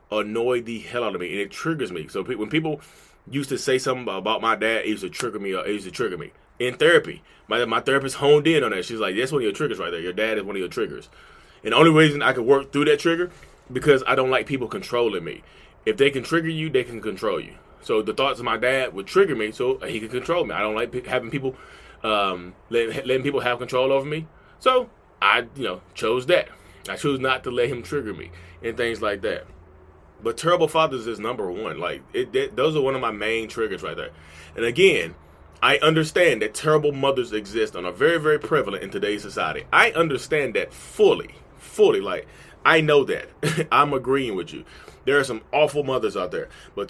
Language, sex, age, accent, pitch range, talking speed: English, male, 20-39, American, 115-160 Hz, 225 wpm